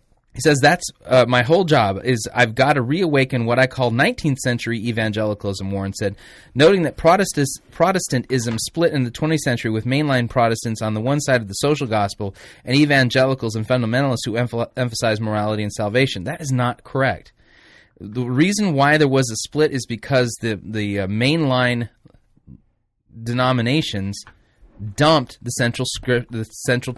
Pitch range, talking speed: 110-140 Hz, 160 wpm